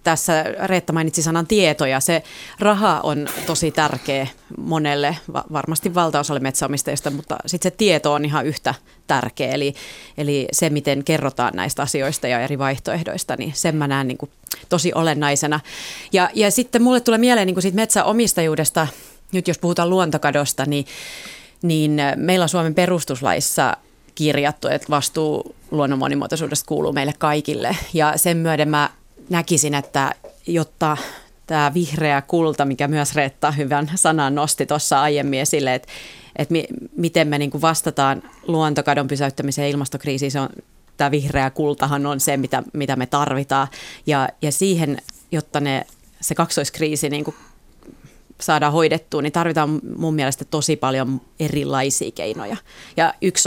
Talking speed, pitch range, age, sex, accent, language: 135 wpm, 140-160 Hz, 30-49, female, native, Finnish